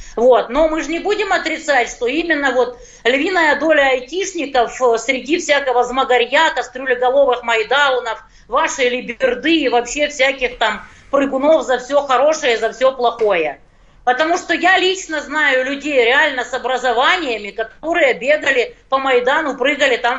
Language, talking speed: Russian, 140 wpm